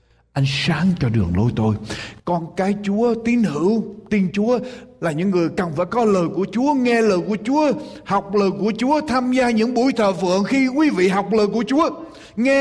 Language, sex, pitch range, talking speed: Vietnamese, male, 130-215 Hz, 210 wpm